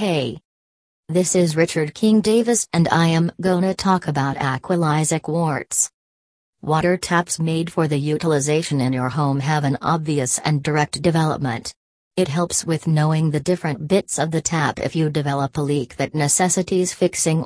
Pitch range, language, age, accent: 150-180 Hz, English, 40-59, American